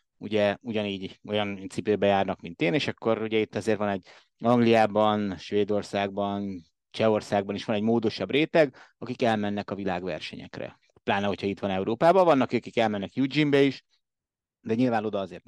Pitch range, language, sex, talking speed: 100-125 Hz, Hungarian, male, 155 wpm